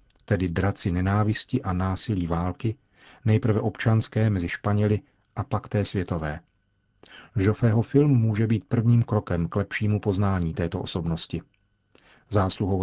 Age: 40-59